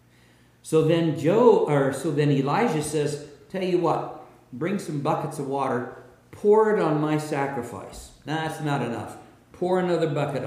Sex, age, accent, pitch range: male, 50-69, American, 120-155 Hz